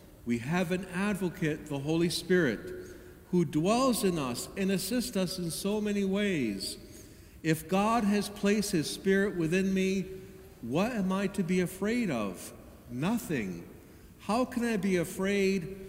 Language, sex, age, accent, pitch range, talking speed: English, male, 60-79, American, 165-205 Hz, 145 wpm